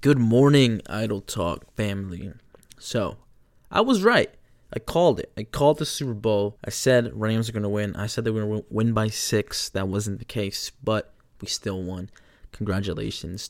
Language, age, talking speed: English, 20-39, 185 wpm